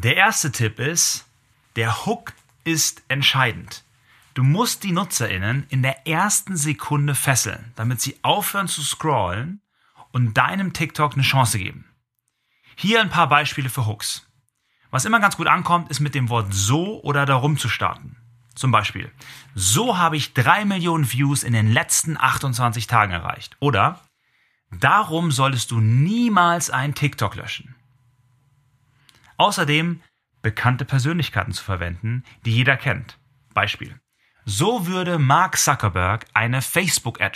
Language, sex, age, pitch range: German, male, 30-49, 115-150 Hz